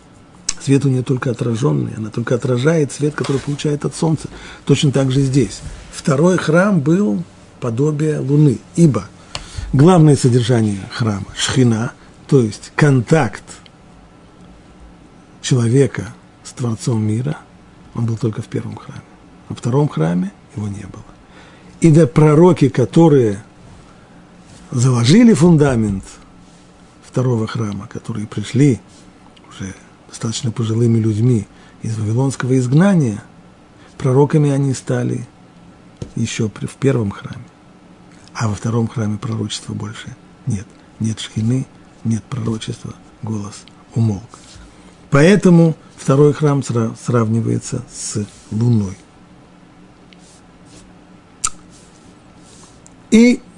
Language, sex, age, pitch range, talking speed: Russian, male, 50-69, 110-145 Hz, 100 wpm